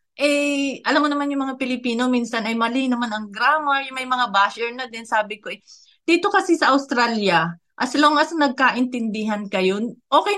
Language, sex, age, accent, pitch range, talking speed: Filipino, female, 30-49, native, 205-270 Hz, 190 wpm